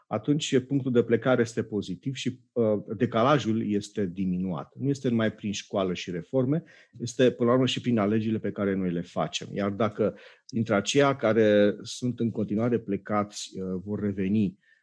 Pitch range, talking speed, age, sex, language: 95-110 Hz, 170 wpm, 40-59, male, Romanian